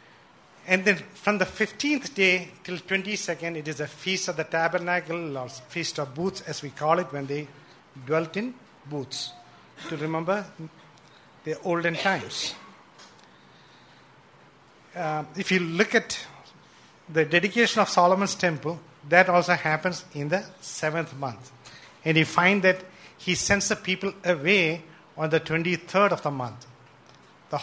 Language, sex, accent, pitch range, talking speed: English, male, Indian, 150-190 Hz, 145 wpm